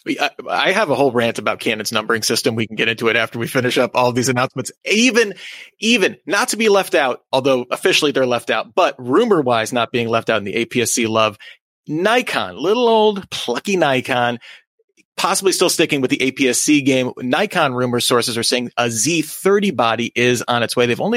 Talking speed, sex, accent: 200 wpm, male, American